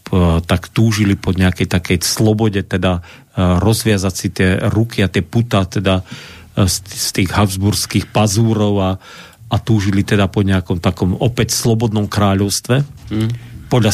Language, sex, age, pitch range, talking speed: Slovak, male, 40-59, 95-115 Hz, 130 wpm